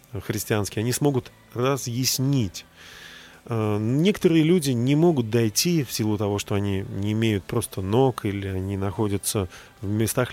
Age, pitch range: 20-39, 100-130 Hz